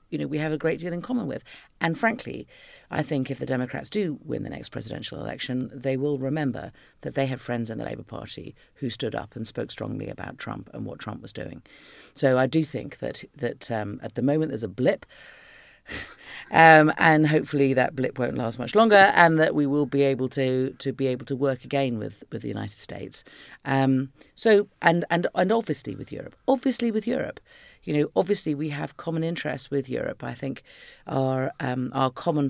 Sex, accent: female, British